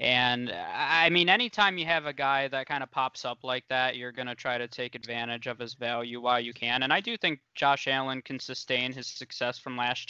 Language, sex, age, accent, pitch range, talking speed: English, male, 20-39, American, 125-145 Hz, 240 wpm